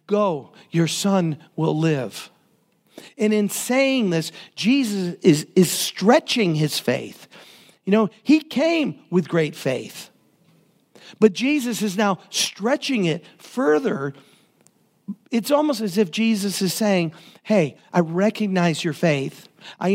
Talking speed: 125 wpm